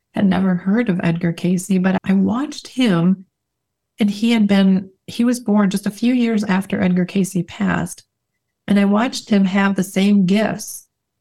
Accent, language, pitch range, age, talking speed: American, English, 180-215 Hz, 40-59, 175 wpm